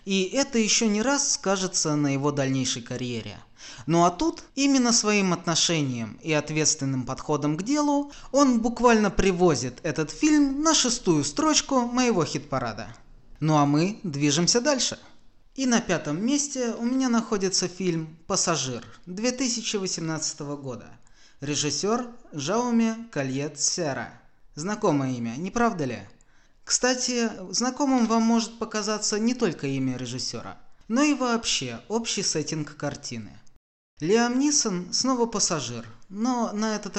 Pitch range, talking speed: 145-230 Hz, 125 wpm